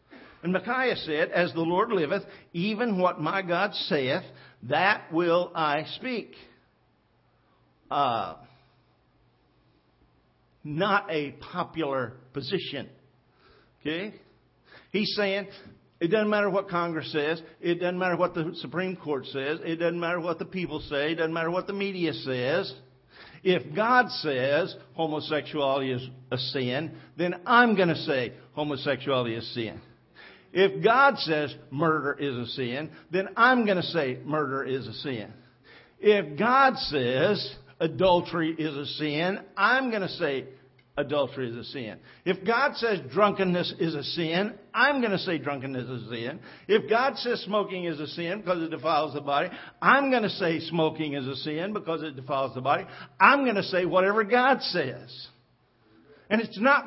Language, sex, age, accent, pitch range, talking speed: English, male, 50-69, American, 140-195 Hz, 155 wpm